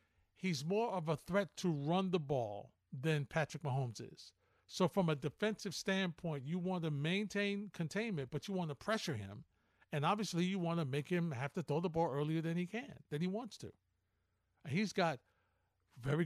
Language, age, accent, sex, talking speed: English, 50-69, American, male, 190 wpm